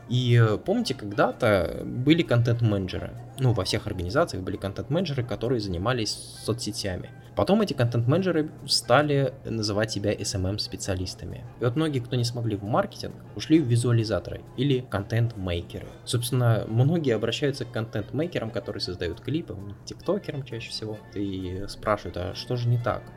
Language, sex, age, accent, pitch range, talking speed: Russian, male, 20-39, native, 100-125 Hz, 135 wpm